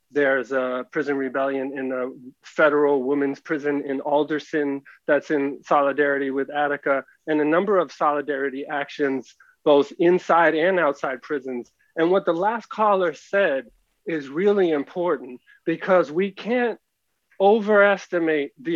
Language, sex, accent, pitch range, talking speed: English, male, American, 140-180 Hz, 130 wpm